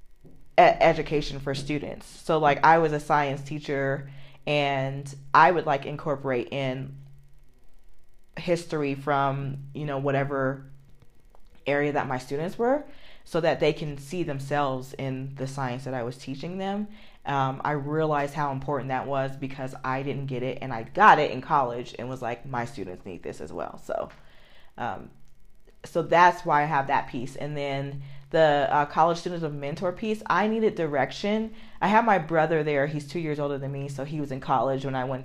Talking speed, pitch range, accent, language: 180 wpm, 135-155 Hz, American, English